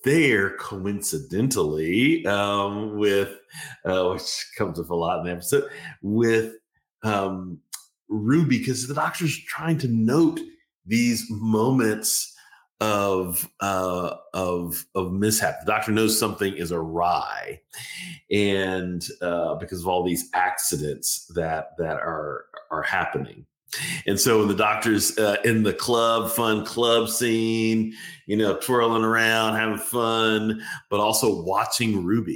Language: English